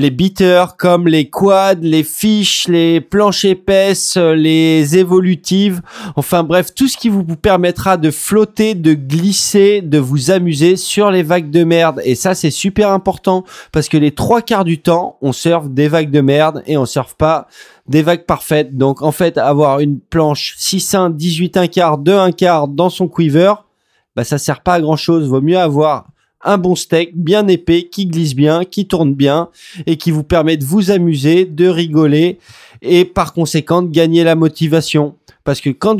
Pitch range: 150-185 Hz